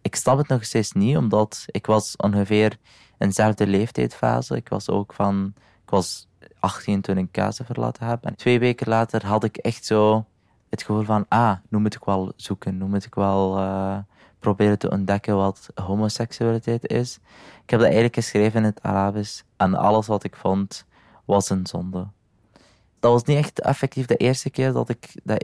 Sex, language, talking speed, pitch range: male, Dutch, 180 wpm, 100-120 Hz